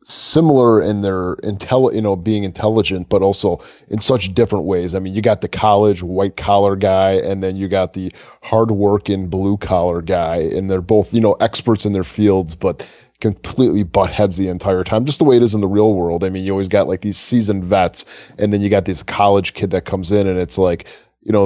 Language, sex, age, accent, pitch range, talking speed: English, male, 20-39, American, 95-105 Hz, 225 wpm